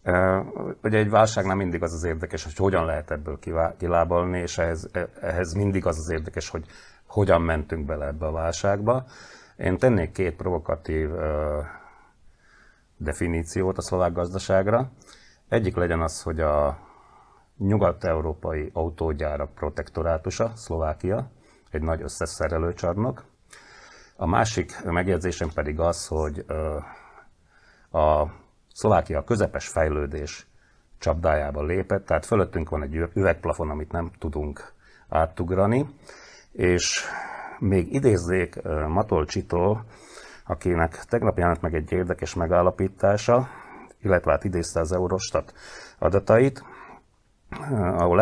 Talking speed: 110 wpm